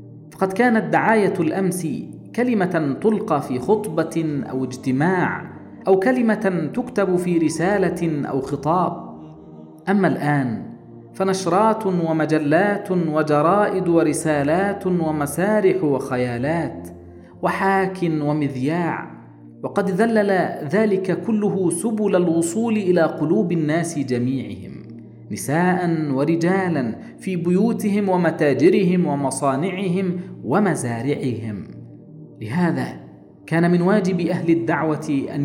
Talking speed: 85 wpm